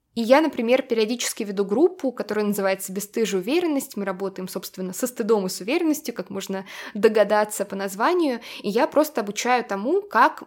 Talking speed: 165 wpm